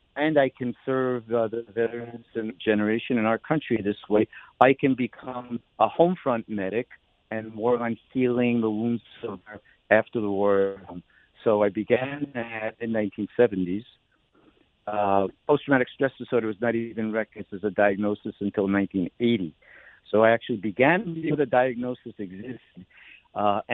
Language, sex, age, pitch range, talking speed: English, male, 60-79, 100-125 Hz, 150 wpm